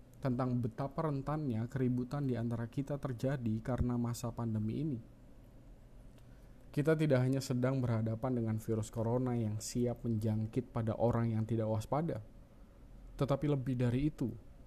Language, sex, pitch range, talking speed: Indonesian, male, 115-145 Hz, 125 wpm